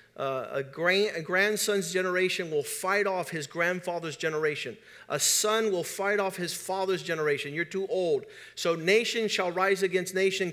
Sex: male